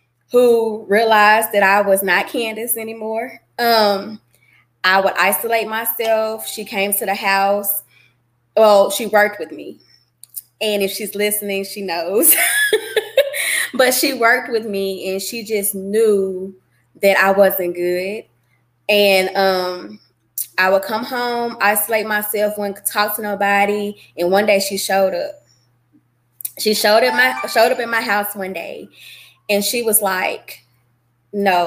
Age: 20-39